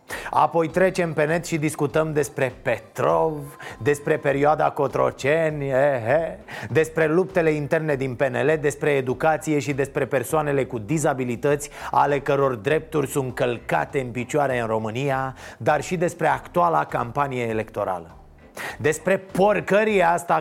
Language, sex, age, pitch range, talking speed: Romanian, male, 30-49, 140-190 Hz, 120 wpm